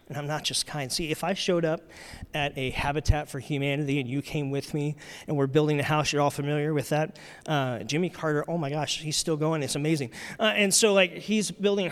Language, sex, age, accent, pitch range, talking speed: English, male, 30-49, American, 150-215 Hz, 235 wpm